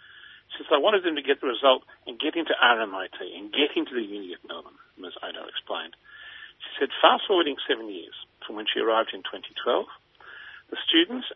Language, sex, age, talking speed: English, male, 50-69, 185 wpm